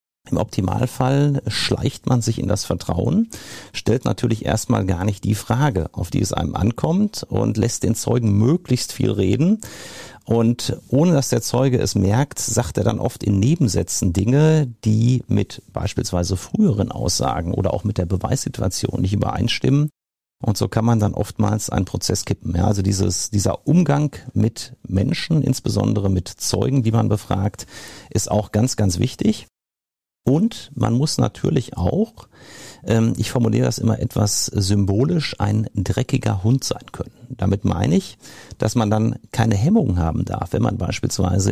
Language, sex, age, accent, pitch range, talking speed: German, male, 50-69, German, 100-130 Hz, 155 wpm